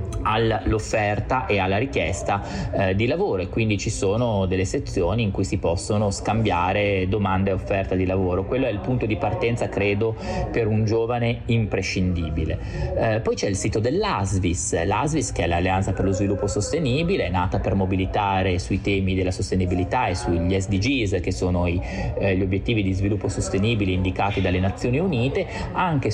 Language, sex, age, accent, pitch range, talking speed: Italian, male, 30-49, native, 95-115 Hz, 170 wpm